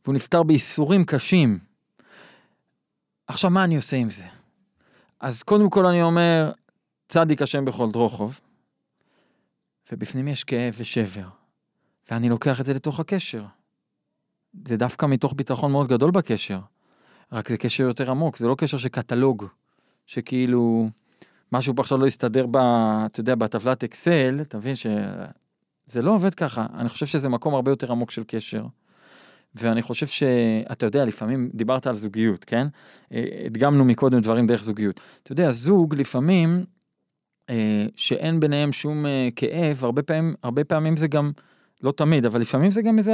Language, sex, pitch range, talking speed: Hebrew, male, 120-155 Hz, 145 wpm